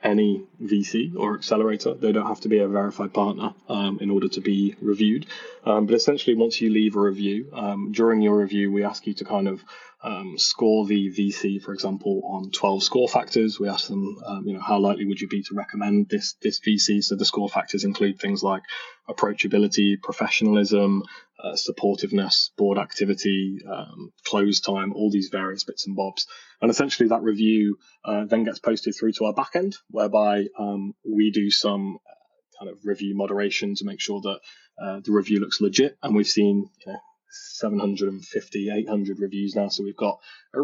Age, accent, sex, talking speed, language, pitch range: 20-39, British, male, 185 wpm, English, 100-110 Hz